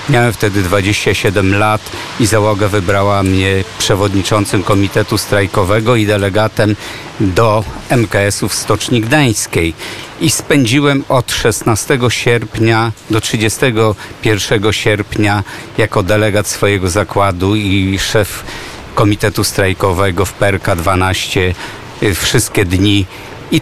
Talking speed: 100 wpm